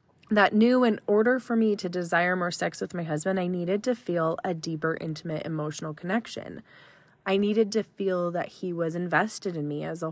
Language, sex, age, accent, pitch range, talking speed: English, female, 20-39, American, 165-210 Hz, 200 wpm